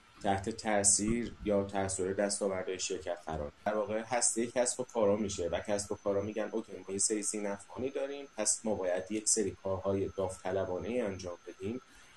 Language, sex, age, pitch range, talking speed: Persian, male, 30-49, 95-110 Hz, 180 wpm